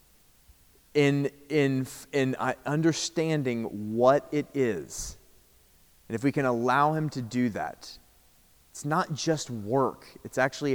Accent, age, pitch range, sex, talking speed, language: American, 30-49, 105-145 Hz, male, 125 wpm, English